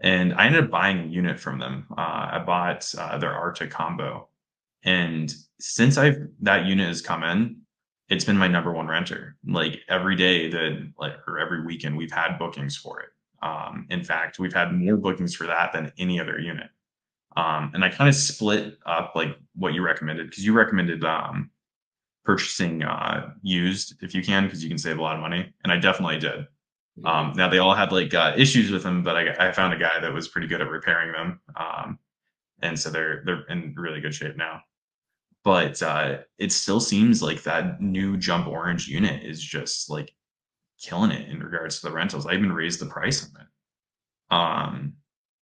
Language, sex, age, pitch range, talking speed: English, male, 20-39, 80-95 Hz, 200 wpm